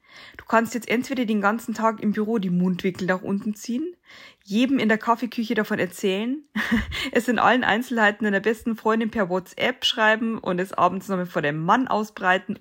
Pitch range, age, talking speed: 190-230 Hz, 20-39, 180 wpm